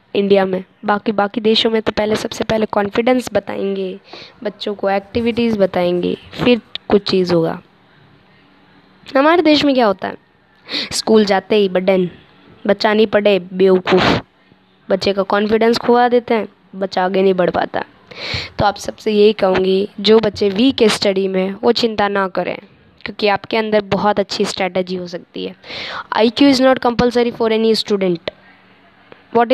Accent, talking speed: native, 155 wpm